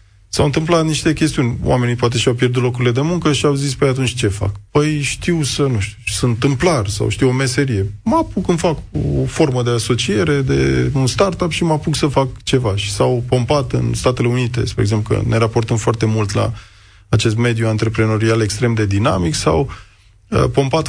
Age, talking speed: 20-39, 200 wpm